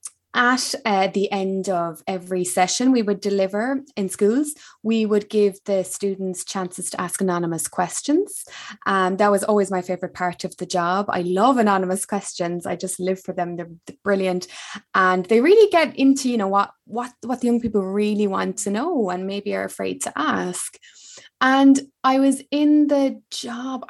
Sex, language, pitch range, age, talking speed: female, English, 185-250 Hz, 20-39, 185 wpm